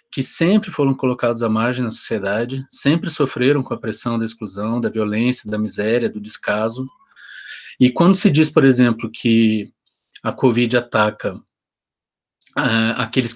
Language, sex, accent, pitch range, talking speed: Portuguese, male, Brazilian, 115-135 Hz, 145 wpm